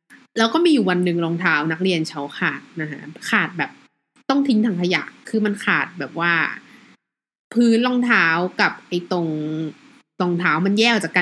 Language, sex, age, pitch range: Thai, female, 20-39, 170-240 Hz